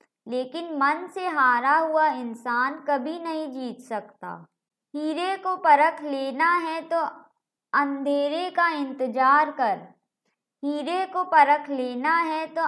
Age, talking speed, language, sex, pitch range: 20-39, 125 wpm, Hindi, male, 255-315 Hz